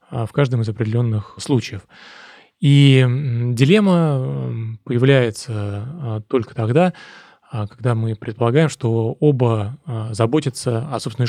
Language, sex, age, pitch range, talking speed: Russian, male, 20-39, 115-140 Hz, 95 wpm